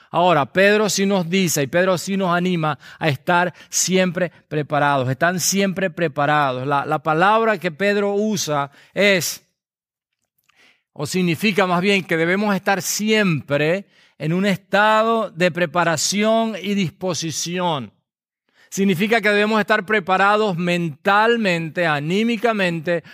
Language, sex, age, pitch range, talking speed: English, male, 40-59, 160-205 Hz, 120 wpm